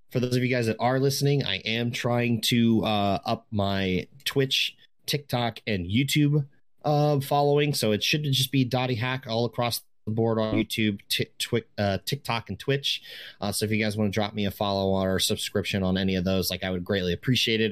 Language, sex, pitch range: English, male, 100-125 Hz